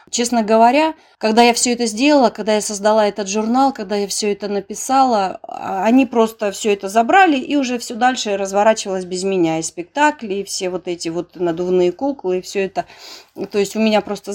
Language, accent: Russian, native